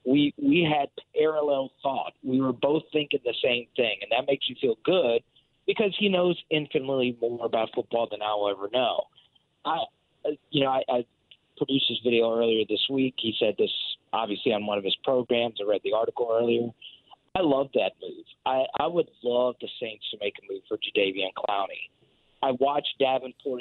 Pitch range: 120-155 Hz